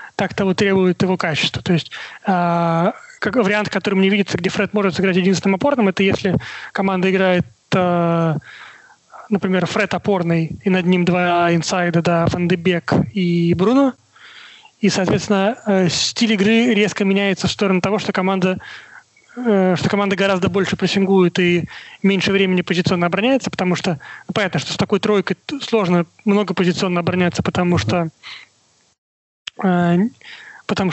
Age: 30-49